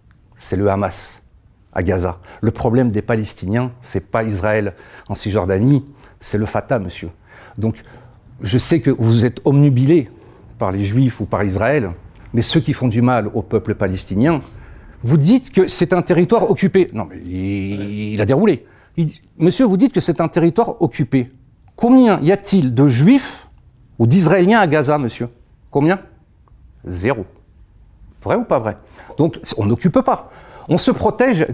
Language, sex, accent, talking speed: French, male, French, 165 wpm